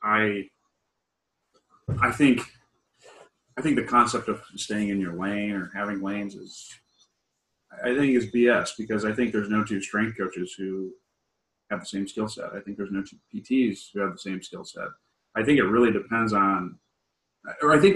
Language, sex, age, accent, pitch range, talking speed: English, male, 30-49, American, 105-120 Hz, 185 wpm